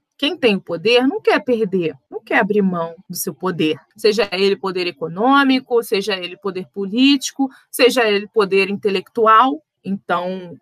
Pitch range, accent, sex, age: 195-240 Hz, Brazilian, female, 20-39